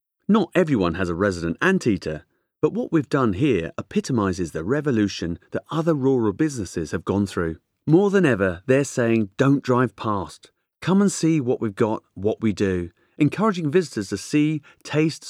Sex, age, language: male, 40-59, English